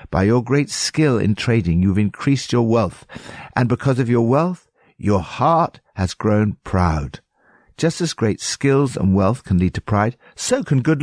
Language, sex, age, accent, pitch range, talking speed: English, male, 60-79, British, 95-135 Hz, 180 wpm